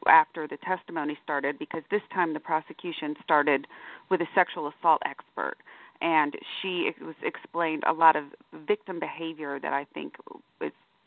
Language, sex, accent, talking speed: English, female, American, 150 wpm